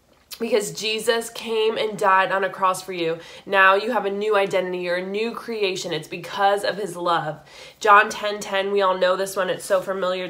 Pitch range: 180-205 Hz